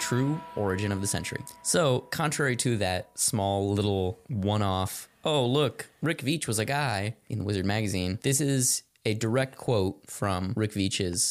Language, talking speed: English, 165 wpm